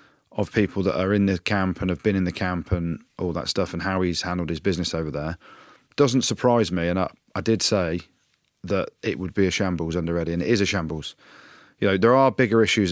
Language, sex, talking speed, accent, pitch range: English, male, 240 wpm, British, 90-115 Hz